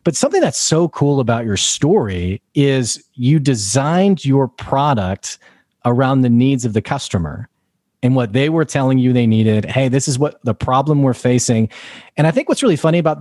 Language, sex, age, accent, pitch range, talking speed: English, male, 30-49, American, 115-155 Hz, 190 wpm